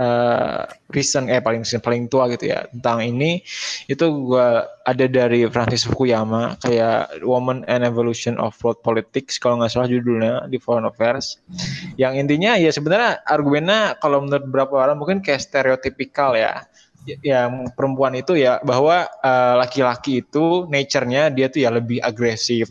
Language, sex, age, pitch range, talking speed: Indonesian, male, 20-39, 125-145 Hz, 150 wpm